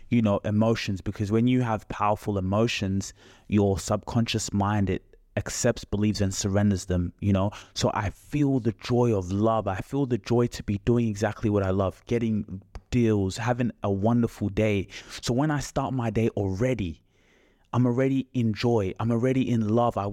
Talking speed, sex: 180 wpm, male